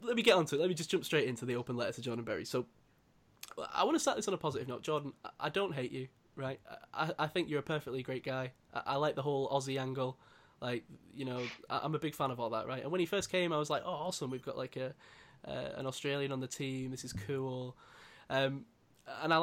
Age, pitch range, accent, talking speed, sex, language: 10-29, 130-180 Hz, British, 265 wpm, male, English